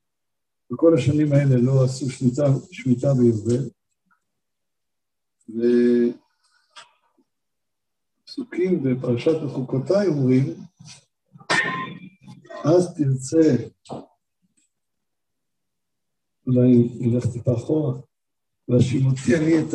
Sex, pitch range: male, 125-160 Hz